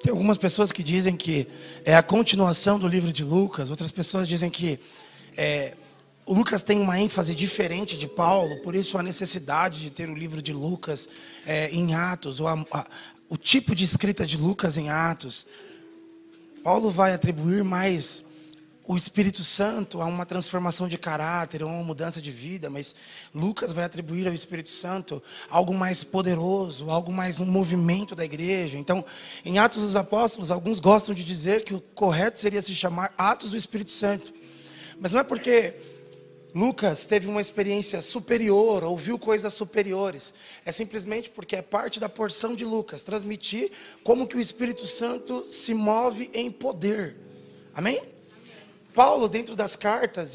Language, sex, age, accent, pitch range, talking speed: Portuguese, male, 20-39, Brazilian, 170-220 Hz, 165 wpm